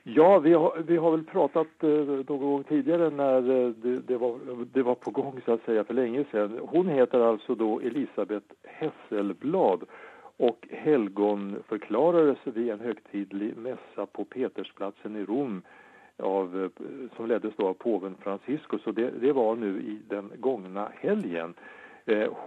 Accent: Norwegian